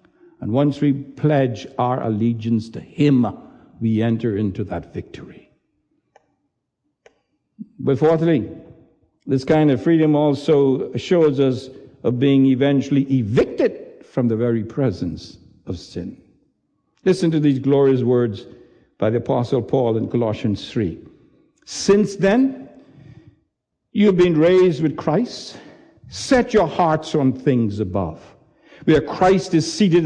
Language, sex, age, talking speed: English, male, 60-79, 120 wpm